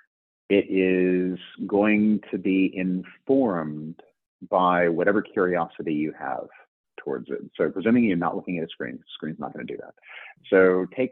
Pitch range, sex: 85-100 Hz, male